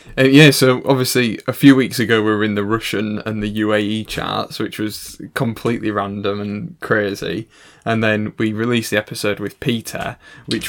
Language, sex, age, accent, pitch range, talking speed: English, male, 10-29, British, 100-120 Hz, 180 wpm